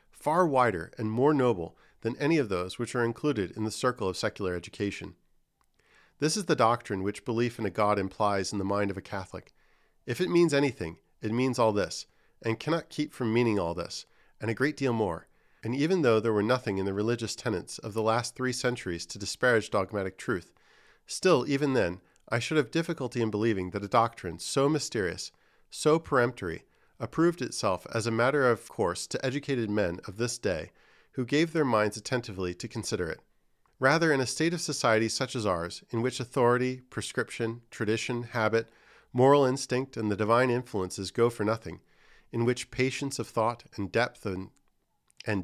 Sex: male